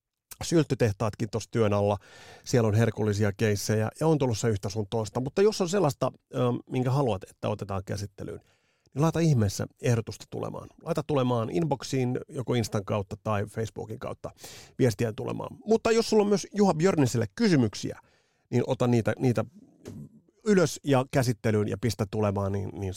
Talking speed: 155 wpm